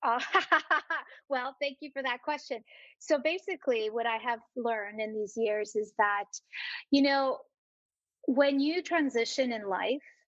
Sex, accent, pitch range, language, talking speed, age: female, American, 220-275 Hz, English, 145 wpm, 30-49